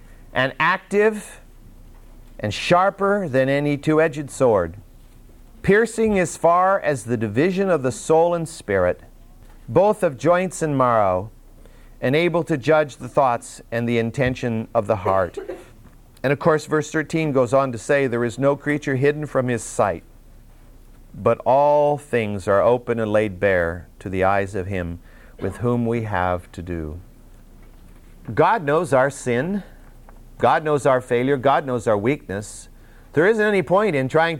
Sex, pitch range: male, 120-165 Hz